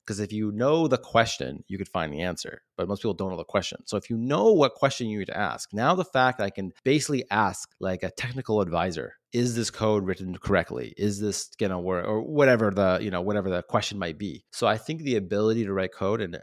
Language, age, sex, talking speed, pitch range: English, 30-49, male, 250 wpm, 95-115 Hz